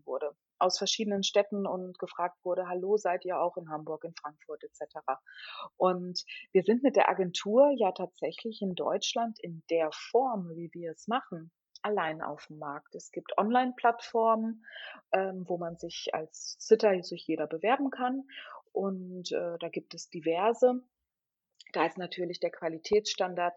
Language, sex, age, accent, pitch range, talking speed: German, female, 30-49, German, 165-215 Hz, 150 wpm